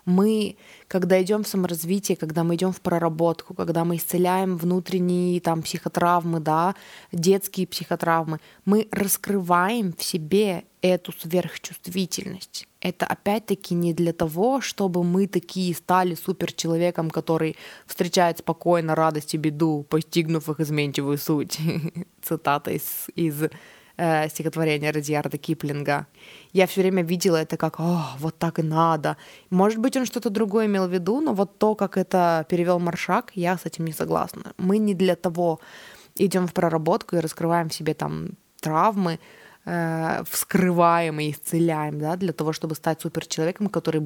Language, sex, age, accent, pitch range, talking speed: Russian, female, 20-39, native, 160-185 Hz, 145 wpm